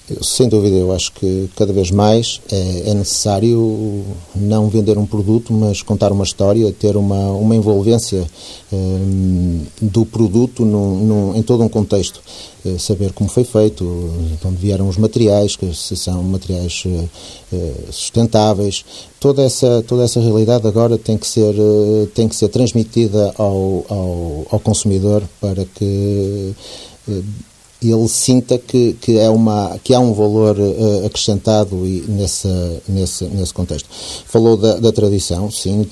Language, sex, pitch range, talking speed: Portuguese, male, 95-110 Hz, 150 wpm